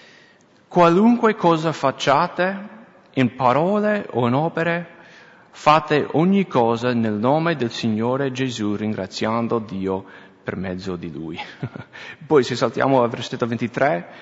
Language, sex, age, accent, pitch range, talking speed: English, male, 30-49, Italian, 115-170 Hz, 120 wpm